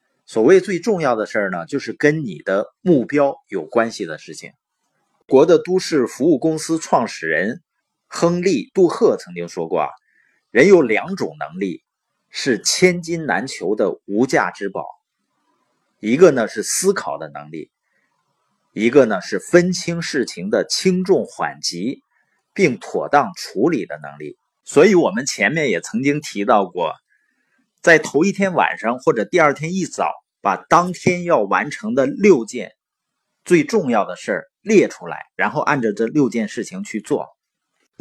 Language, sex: Chinese, male